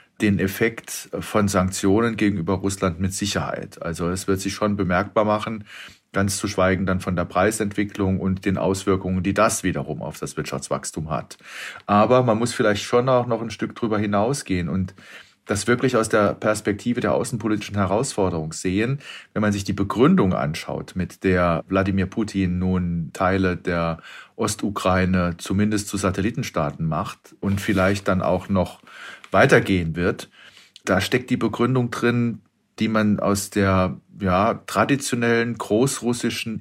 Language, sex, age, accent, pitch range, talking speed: English, male, 40-59, German, 95-110 Hz, 145 wpm